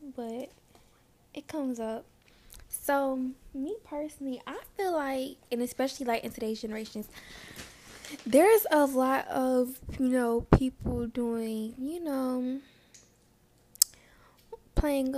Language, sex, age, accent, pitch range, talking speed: English, female, 10-29, American, 215-260 Hz, 105 wpm